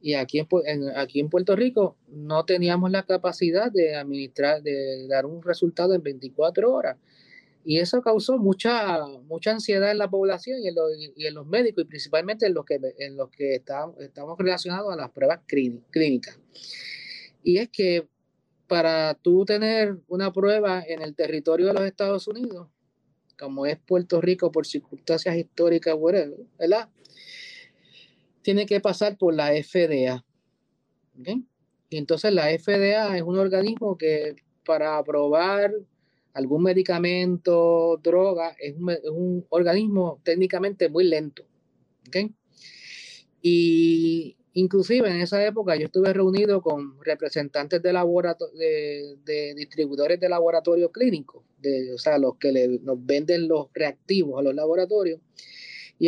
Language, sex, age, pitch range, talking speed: Spanish, male, 30-49, 150-195 Hz, 145 wpm